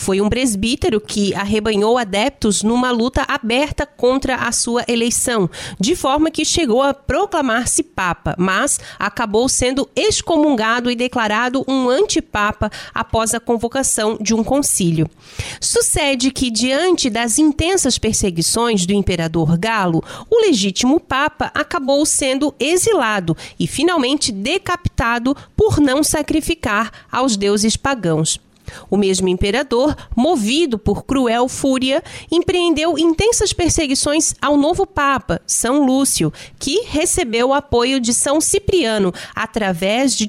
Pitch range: 215-305 Hz